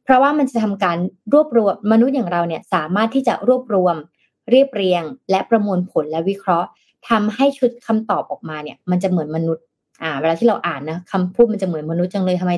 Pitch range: 175-230 Hz